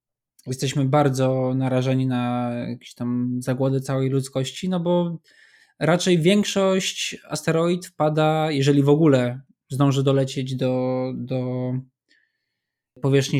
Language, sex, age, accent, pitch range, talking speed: Polish, male, 20-39, native, 135-160 Hz, 105 wpm